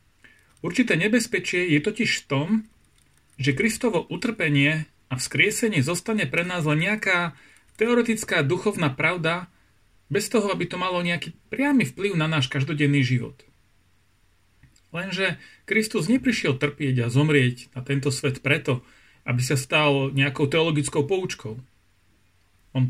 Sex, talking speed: male, 125 wpm